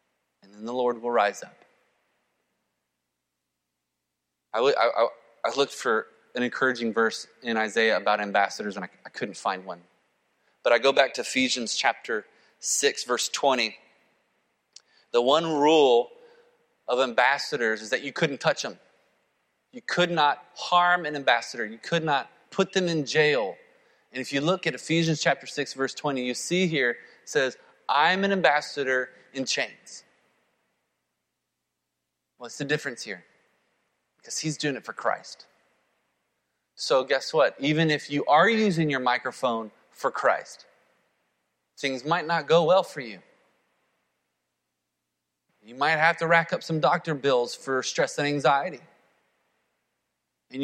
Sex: male